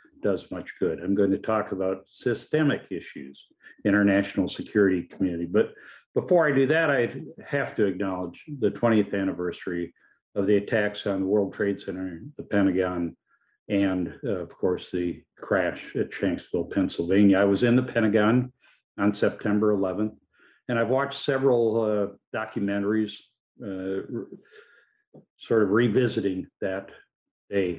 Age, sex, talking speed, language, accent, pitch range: 50-69, male, 145 wpm, English, American, 95-115 Hz